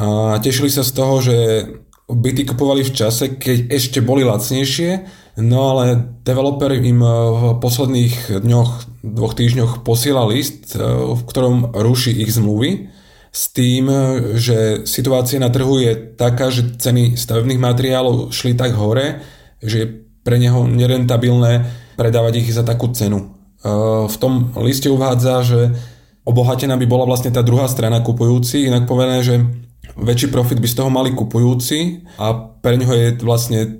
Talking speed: 145 wpm